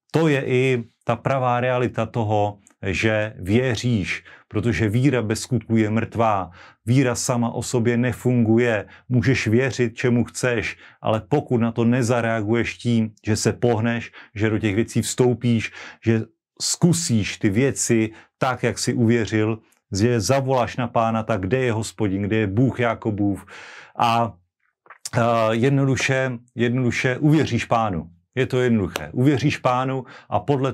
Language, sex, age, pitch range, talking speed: Slovak, male, 40-59, 110-125 Hz, 135 wpm